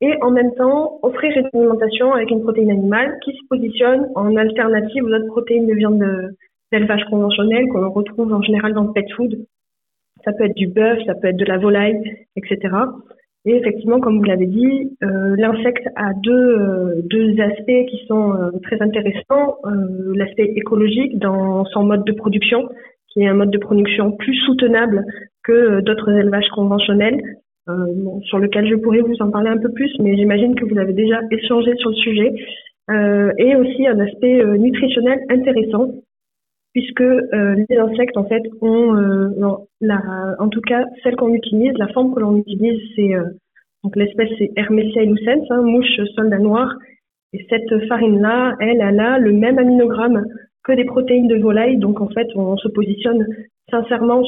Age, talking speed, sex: 30-49, 180 wpm, female